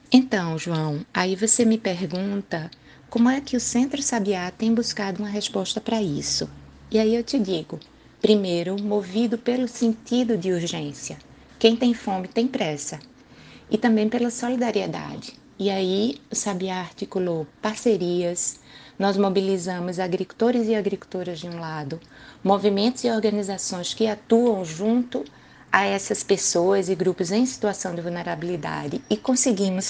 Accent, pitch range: Brazilian, 175-230 Hz